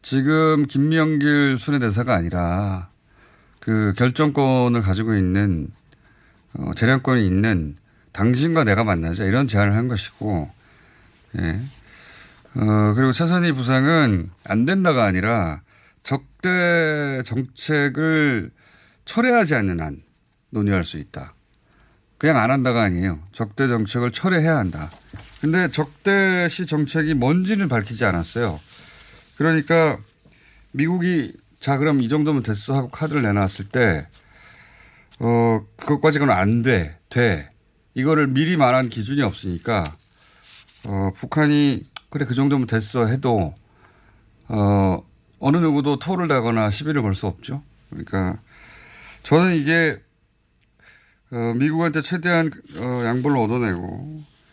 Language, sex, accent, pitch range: Korean, male, native, 100-150 Hz